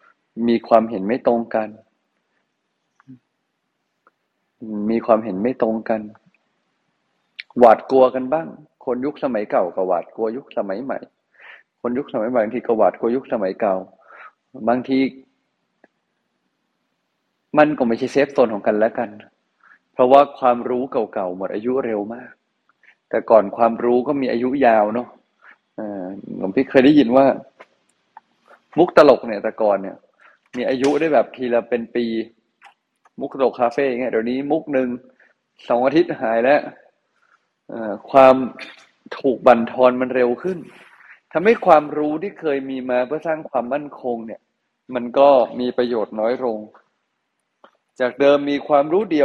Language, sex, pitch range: Thai, male, 115-140 Hz